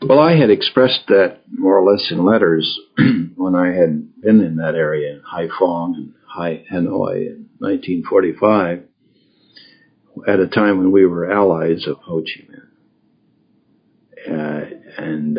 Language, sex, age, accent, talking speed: English, male, 60-79, American, 140 wpm